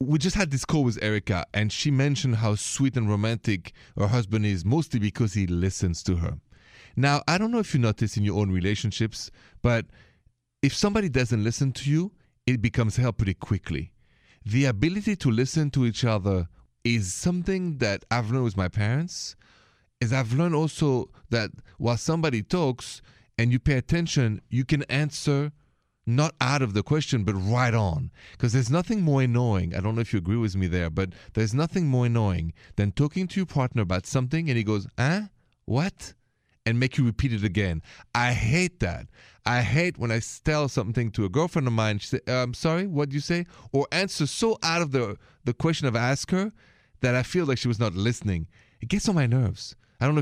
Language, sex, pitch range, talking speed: English, male, 110-145 Hz, 200 wpm